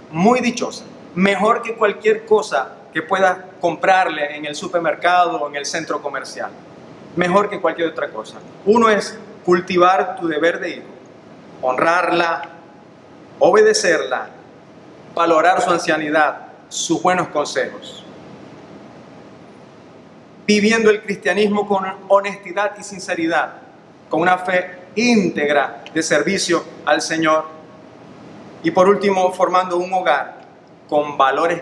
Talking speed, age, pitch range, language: 115 wpm, 40-59, 165-210 Hz, Spanish